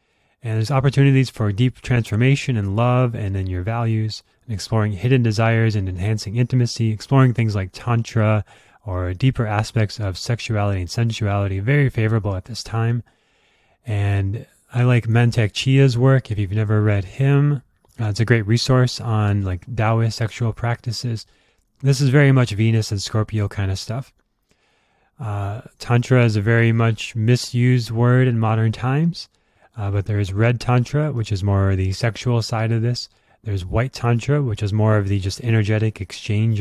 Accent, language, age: American, English, 30-49